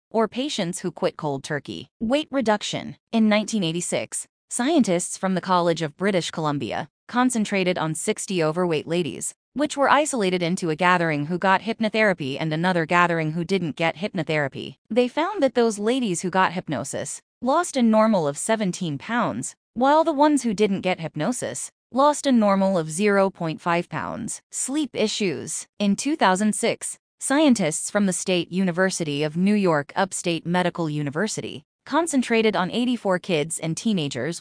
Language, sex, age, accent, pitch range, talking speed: English, female, 20-39, American, 170-220 Hz, 150 wpm